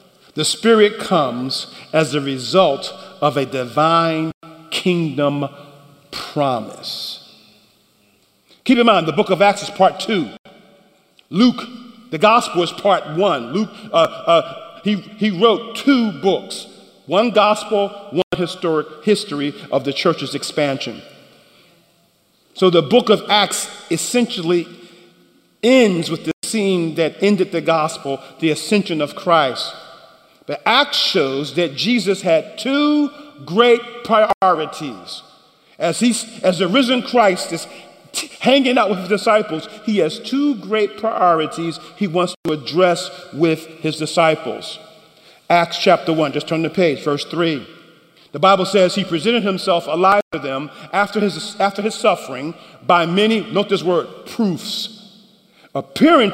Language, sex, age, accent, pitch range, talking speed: English, male, 50-69, American, 160-210 Hz, 135 wpm